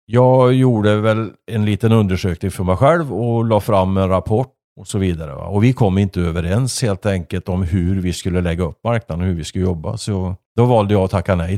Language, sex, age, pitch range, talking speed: Swedish, male, 50-69, 90-110 Hz, 225 wpm